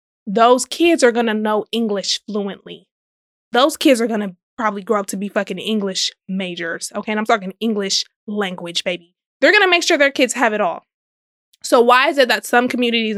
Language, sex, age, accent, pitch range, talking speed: English, female, 20-39, American, 225-315 Hz, 205 wpm